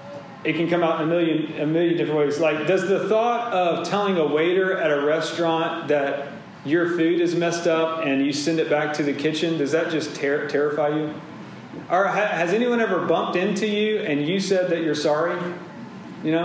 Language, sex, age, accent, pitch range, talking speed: English, male, 30-49, American, 160-185 Hz, 200 wpm